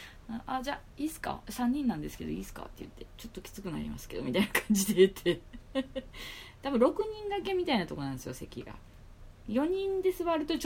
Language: Japanese